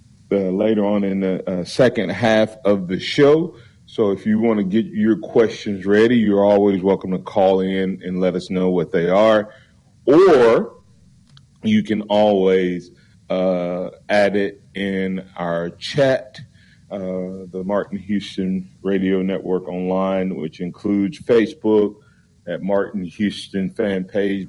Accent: American